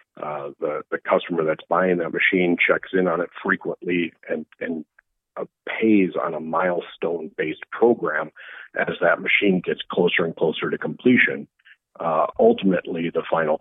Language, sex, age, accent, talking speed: English, male, 40-59, American, 150 wpm